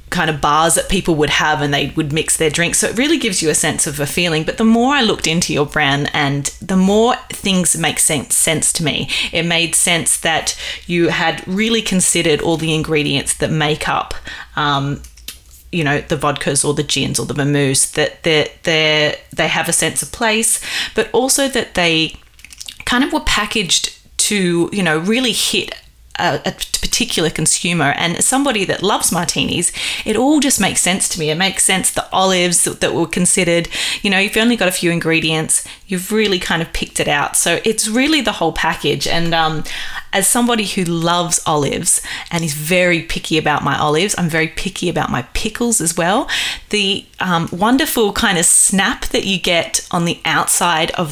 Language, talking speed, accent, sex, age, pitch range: English, 200 wpm, Australian, female, 20-39, 155-205 Hz